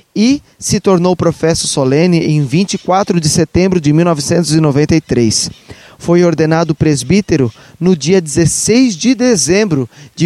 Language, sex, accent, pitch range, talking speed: Portuguese, male, Brazilian, 150-185 Hz, 115 wpm